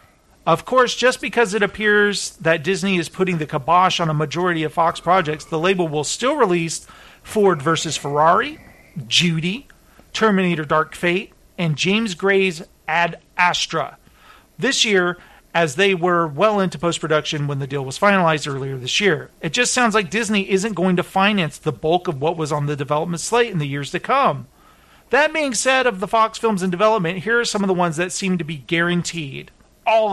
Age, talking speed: 40-59, 190 wpm